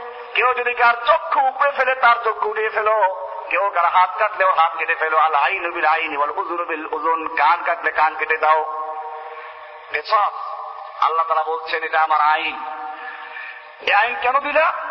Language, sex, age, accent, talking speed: Bengali, male, 50-69, native, 50 wpm